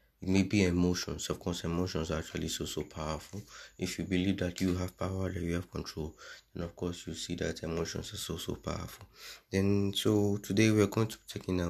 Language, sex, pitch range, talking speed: English, male, 85-105 Hz, 225 wpm